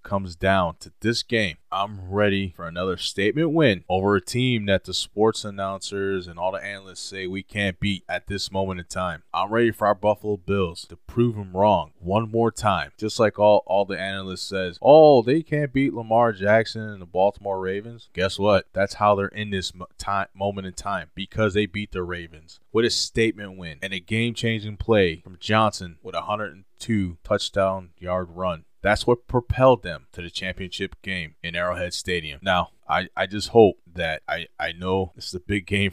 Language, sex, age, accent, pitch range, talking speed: English, male, 20-39, American, 90-105 Hz, 195 wpm